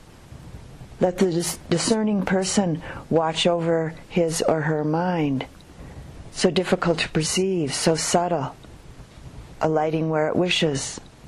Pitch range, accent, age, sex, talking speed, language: 145-170 Hz, American, 50-69, female, 110 wpm, English